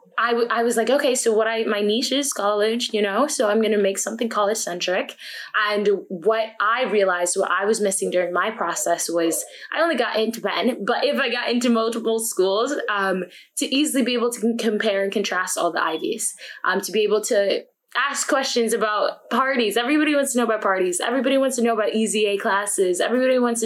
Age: 20-39